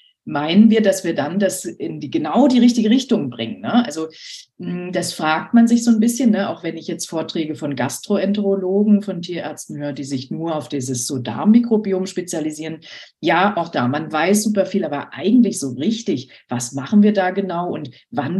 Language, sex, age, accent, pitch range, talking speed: German, female, 40-59, German, 155-215 Hz, 190 wpm